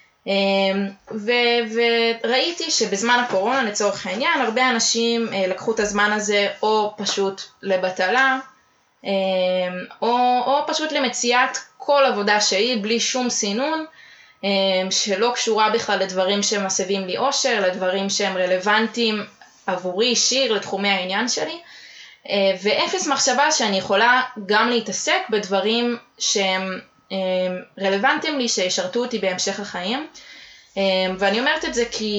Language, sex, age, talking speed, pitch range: Hebrew, female, 20-39, 115 wpm, 190-240 Hz